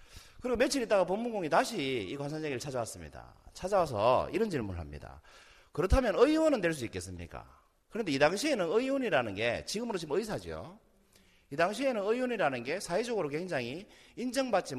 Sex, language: male, Korean